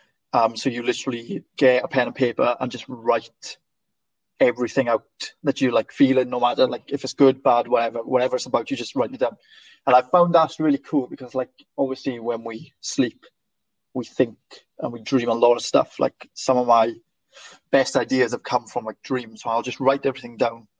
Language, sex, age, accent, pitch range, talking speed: English, male, 20-39, British, 120-135 Hz, 210 wpm